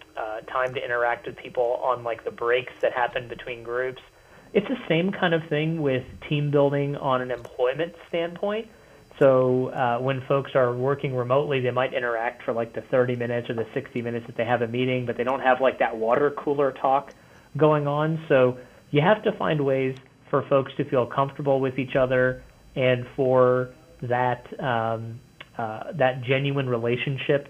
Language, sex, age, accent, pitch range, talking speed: English, male, 30-49, American, 125-145 Hz, 185 wpm